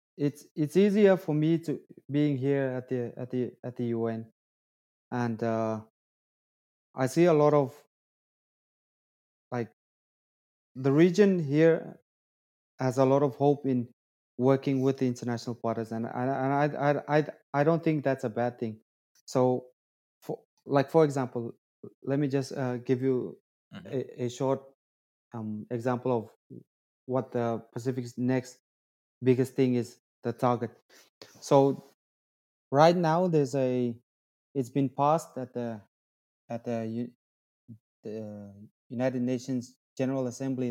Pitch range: 120-145 Hz